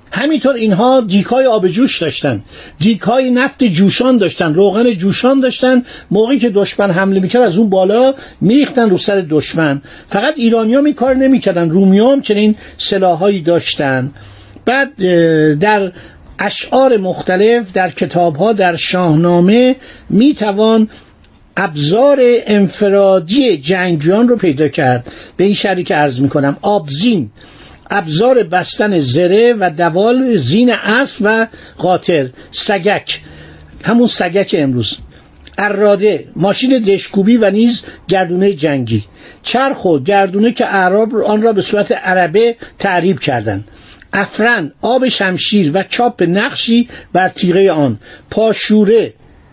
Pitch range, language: 175-235 Hz, Persian